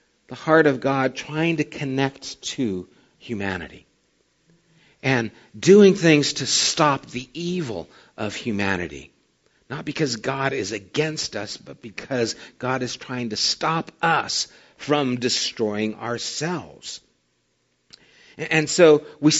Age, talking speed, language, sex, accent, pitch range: 50-69, 120 wpm, English, male, American, 120-155 Hz